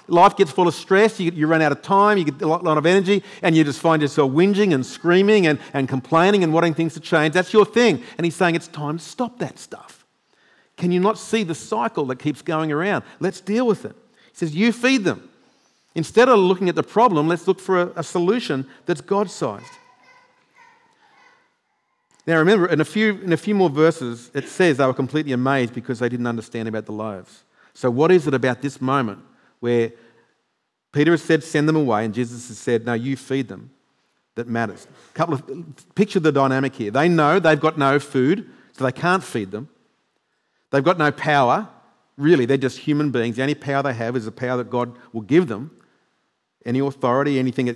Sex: male